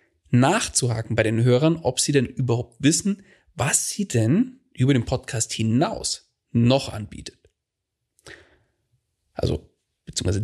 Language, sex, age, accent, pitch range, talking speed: German, male, 30-49, German, 115-150 Hz, 115 wpm